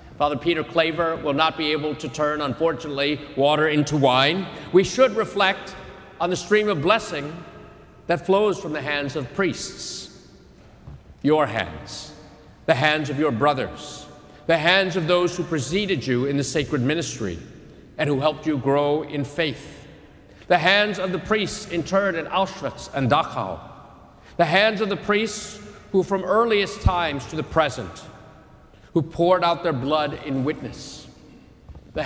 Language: English